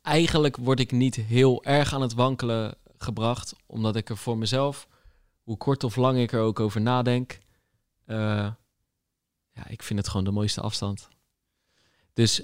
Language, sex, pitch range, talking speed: Dutch, male, 115-140 Hz, 160 wpm